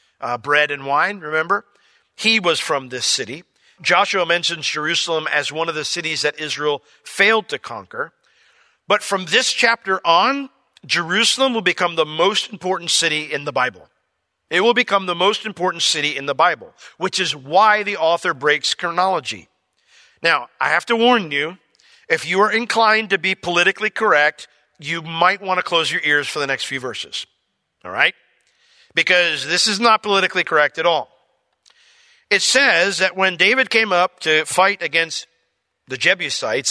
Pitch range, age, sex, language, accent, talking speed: 165-245 Hz, 50-69, male, English, American, 170 wpm